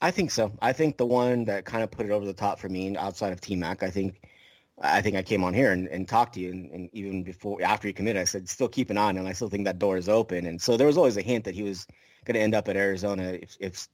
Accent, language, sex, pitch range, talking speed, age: American, English, male, 95-110 Hz, 315 wpm, 30-49